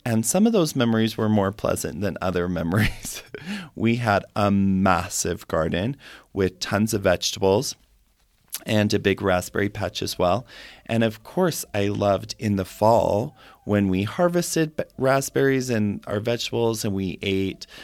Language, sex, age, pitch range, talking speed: English, male, 30-49, 100-120 Hz, 150 wpm